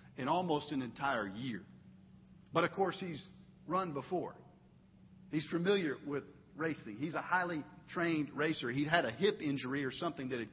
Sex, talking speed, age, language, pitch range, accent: male, 165 wpm, 50-69, English, 155-185 Hz, American